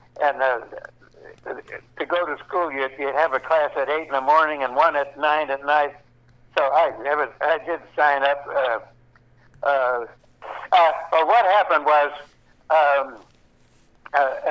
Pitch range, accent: 130-150 Hz, American